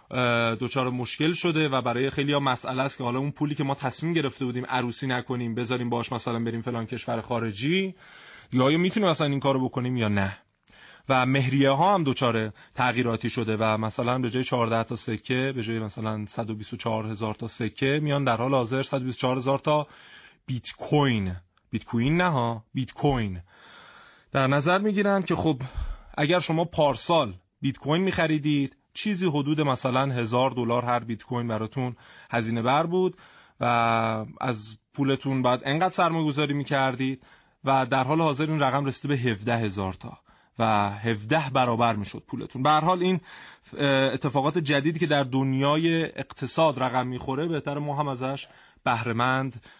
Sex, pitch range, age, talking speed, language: male, 120-145 Hz, 30-49, 160 wpm, Persian